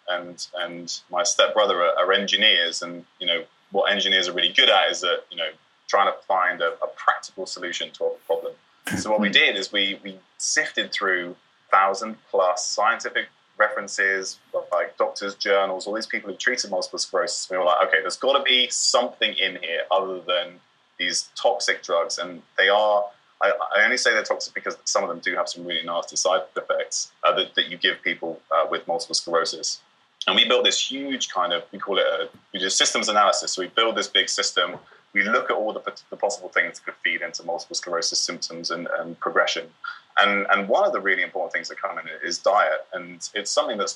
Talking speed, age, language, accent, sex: 215 wpm, 20-39, English, British, male